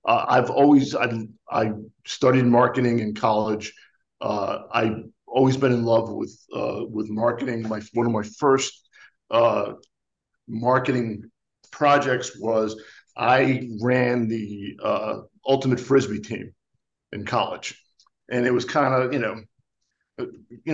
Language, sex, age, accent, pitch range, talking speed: English, male, 50-69, American, 115-130 Hz, 130 wpm